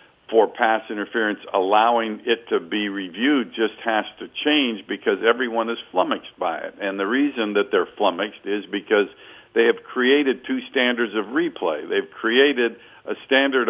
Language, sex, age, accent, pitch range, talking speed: English, male, 50-69, American, 115-155 Hz, 160 wpm